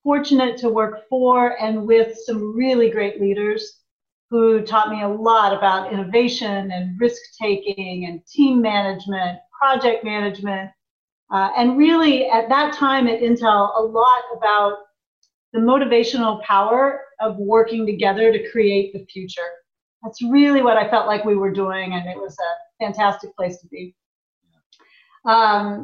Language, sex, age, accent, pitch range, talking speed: English, female, 40-59, American, 205-245 Hz, 150 wpm